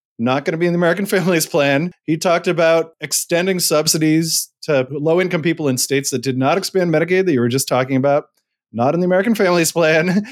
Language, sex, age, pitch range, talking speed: English, male, 30-49, 135-165 Hz, 210 wpm